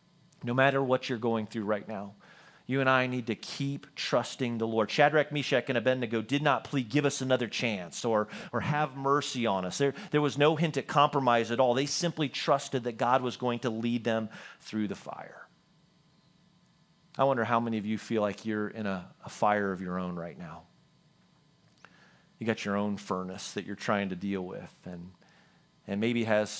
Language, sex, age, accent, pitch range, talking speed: English, male, 40-59, American, 105-135 Hz, 205 wpm